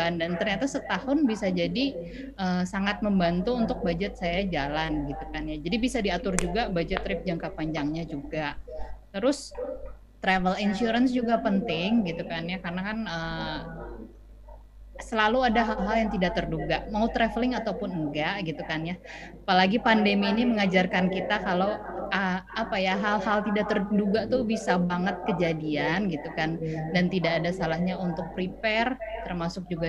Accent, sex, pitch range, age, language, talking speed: native, female, 165-225 Hz, 20-39, Indonesian, 145 wpm